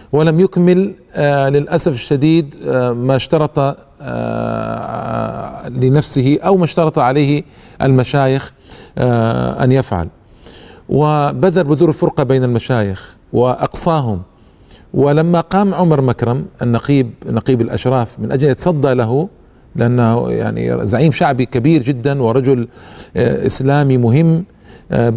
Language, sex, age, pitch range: Arabic, male, 50-69, 120-160 Hz